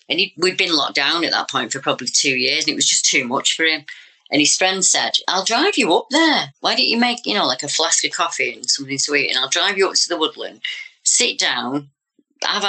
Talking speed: 260 wpm